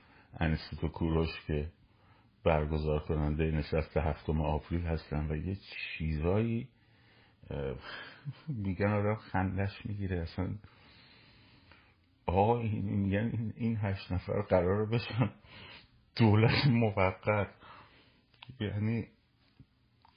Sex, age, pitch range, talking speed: male, 50-69, 85-110 Hz, 90 wpm